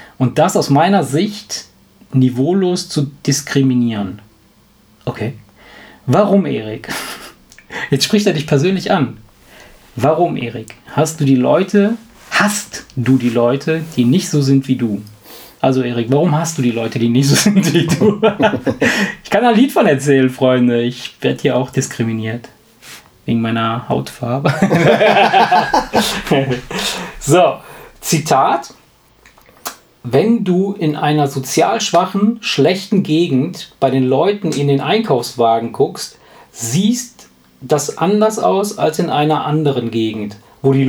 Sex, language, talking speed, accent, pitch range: male, German, 125 wpm, German, 125-185 Hz